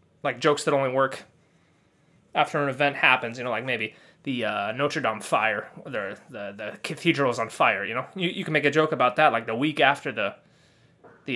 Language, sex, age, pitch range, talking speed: English, male, 20-39, 135-175 Hz, 220 wpm